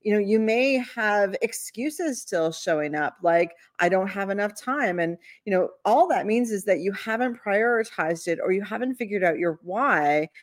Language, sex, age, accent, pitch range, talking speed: English, female, 40-59, American, 175-230 Hz, 195 wpm